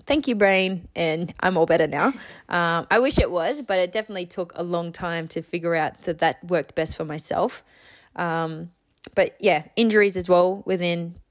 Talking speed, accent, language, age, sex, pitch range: 190 wpm, Australian, English, 20-39, female, 165-185 Hz